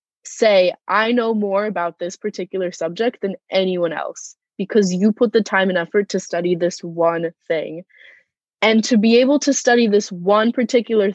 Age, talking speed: 20-39, 170 wpm